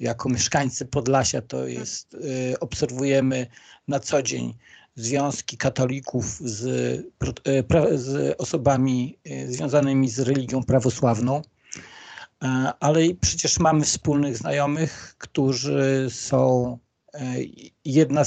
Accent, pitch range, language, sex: native, 125-145 Hz, Polish, male